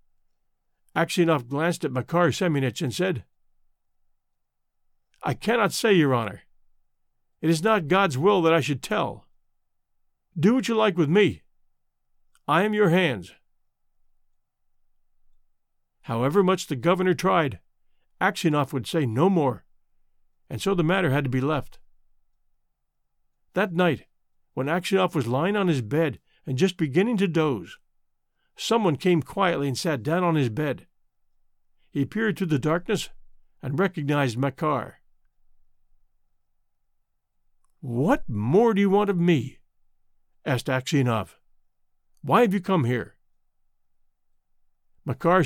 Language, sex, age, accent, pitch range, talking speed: English, male, 50-69, American, 135-190 Hz, 125 wpm